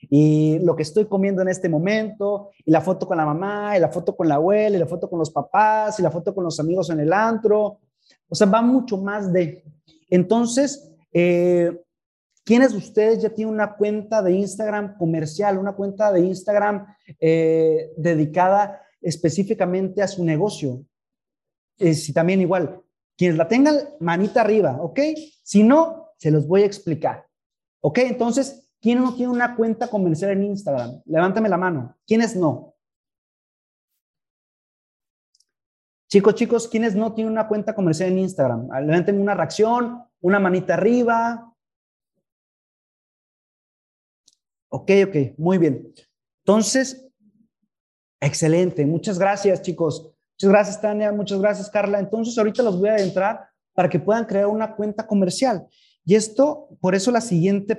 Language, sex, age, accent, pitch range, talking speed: English, male, 30-49, Mexican, 170-220 Hz, 150 wpm